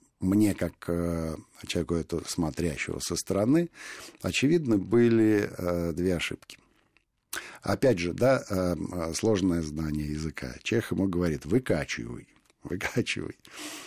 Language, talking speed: Russian, 95 wpm